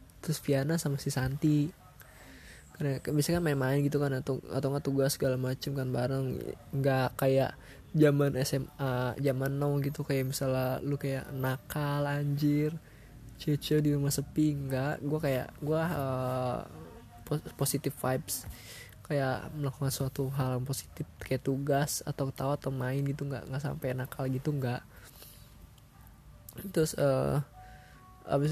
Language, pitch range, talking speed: Indonesian, 130-150 Hz, 135 wpm